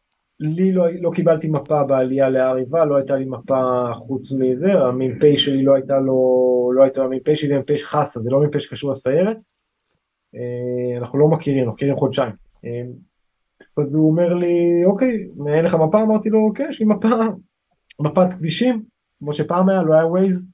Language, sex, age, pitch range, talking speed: Hebrew, male, 20-39, 125-165 Hz, 170 wpm